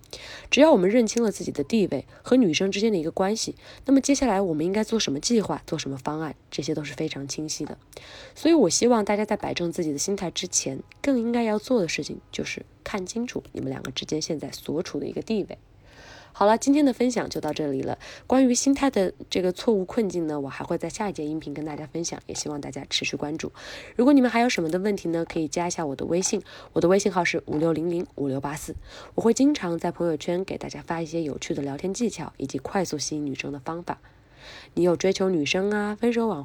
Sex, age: female, 20-39